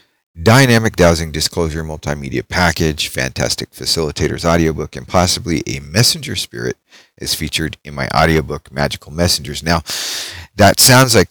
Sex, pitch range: male, 80-95 Hz